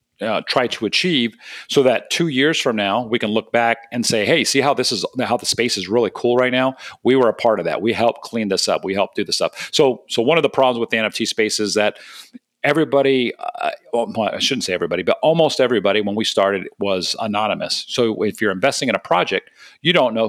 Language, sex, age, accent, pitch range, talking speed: English, male, 40-59, American, 115-140 Hz, 235 wpm